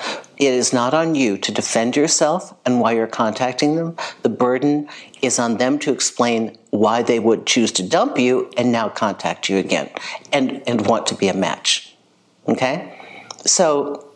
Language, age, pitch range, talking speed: English, 50-69, 115-145 Hz, 175 wpm